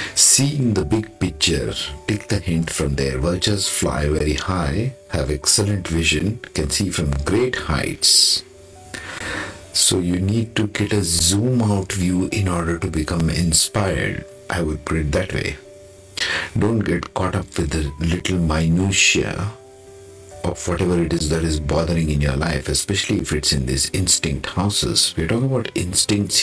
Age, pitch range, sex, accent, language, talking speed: 50-69, 80-100 Hz, male, Indian, English, 160 wpm